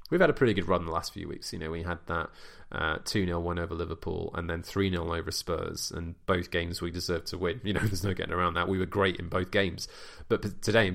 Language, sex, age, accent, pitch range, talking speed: English, male, 20-39, British, 85-95 Hz, 270 wpm